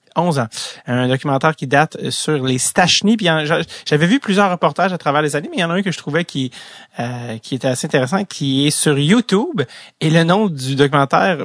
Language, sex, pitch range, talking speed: French, male, 130-160 Hz, 215 wpm